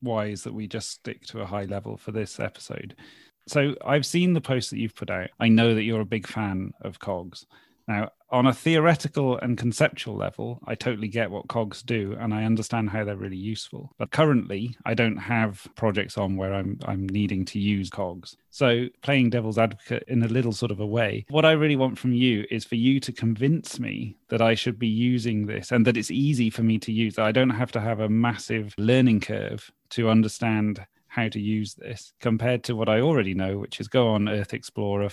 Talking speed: 220 wpm